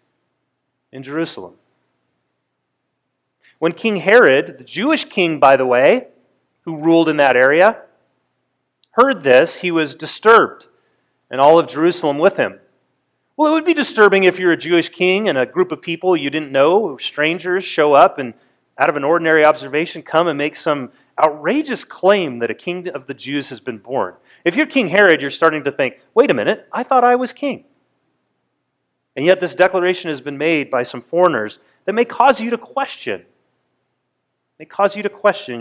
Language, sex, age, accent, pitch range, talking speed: English, male, 30-49, American, 140-200 Hz, 180 wpm